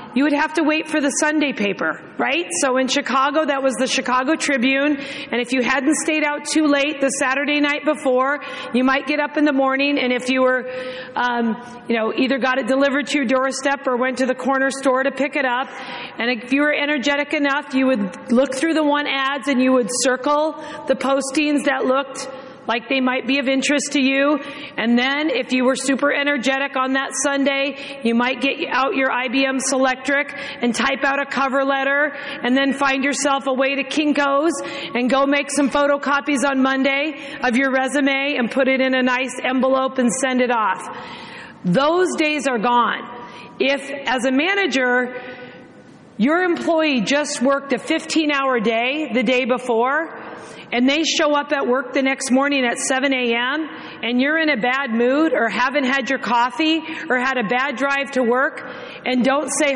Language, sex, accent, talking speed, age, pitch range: English, female, American, 195 wpm, 40-59, 255-285 Hz